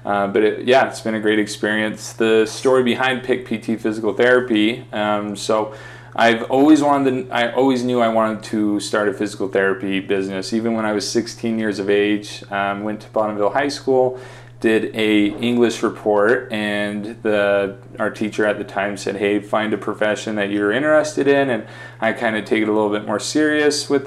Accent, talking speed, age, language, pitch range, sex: American, 195 wpm, 30-49, English, 105-120 Hz, male